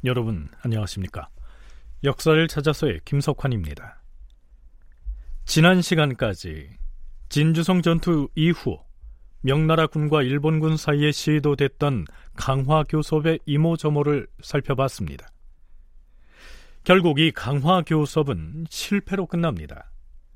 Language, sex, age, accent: Korean, male, 40-59, native